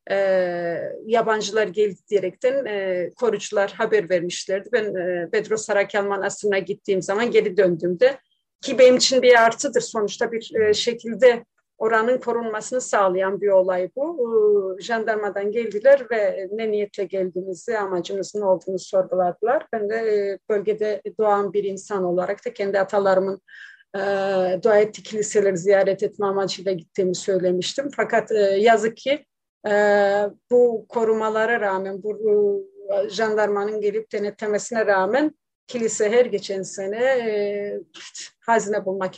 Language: Turkish